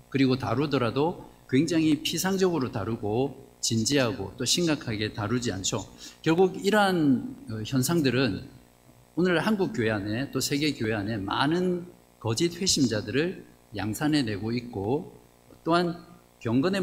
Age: 50-69